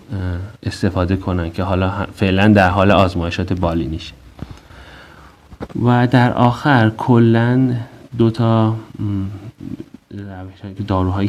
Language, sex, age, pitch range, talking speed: Persian, male, 30-49, 95-115 Hz, 90 wpm